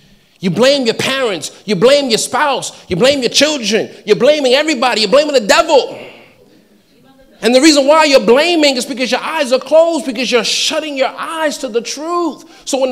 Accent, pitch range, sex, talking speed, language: American, 225-290 Hz, male, 190 wpm, English